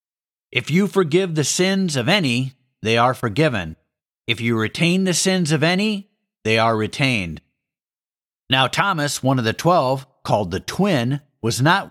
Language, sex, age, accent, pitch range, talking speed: English, male, 50-69, American, 115-175 Hz, 155 wpm